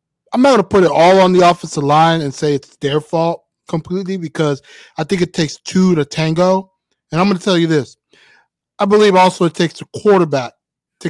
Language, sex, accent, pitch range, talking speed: English, male, American, 145-185 Hz, 215 wpm